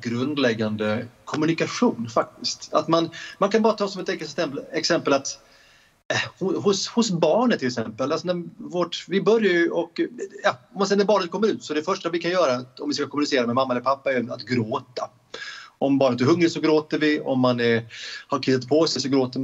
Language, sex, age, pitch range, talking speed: Swedish, male, 30-49, 125-180 Hz, 205 wpm